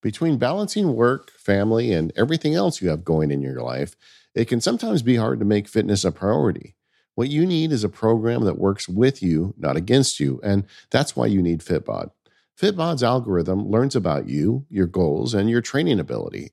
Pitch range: 85-125 Hz